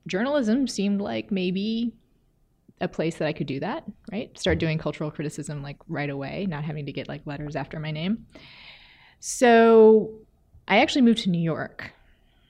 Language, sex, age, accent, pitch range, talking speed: English, female, 20-39, American, 145-180 Hz, 170 wpm